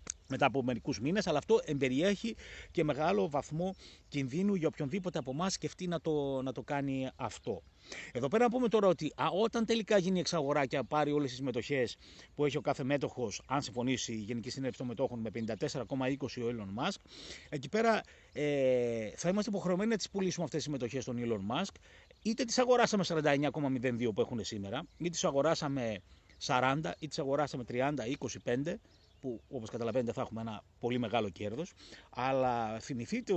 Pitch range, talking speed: 115-160 Hz, 175 wpm